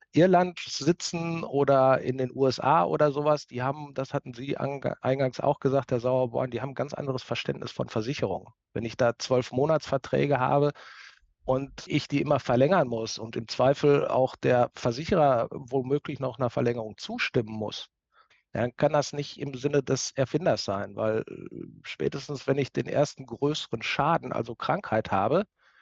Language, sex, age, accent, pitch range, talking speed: German, male, 50-69, German, 125-150 Hz, 165 wpm